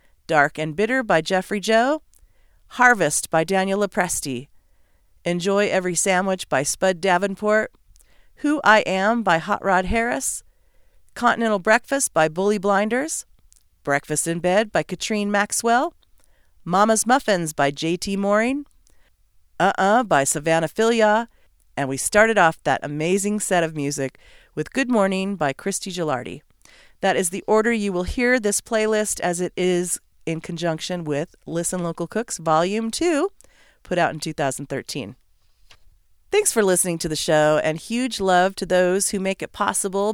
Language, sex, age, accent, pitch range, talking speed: English, female, 40-59, American, 160-220 Hz, 145 wpm